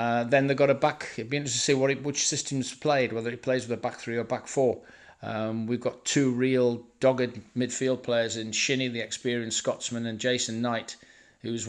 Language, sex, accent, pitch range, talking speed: English, male, British, 115-130 Hz, 220 wpm